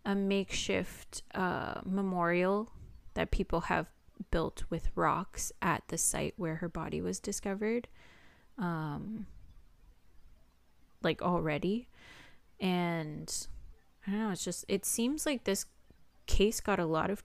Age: 20-39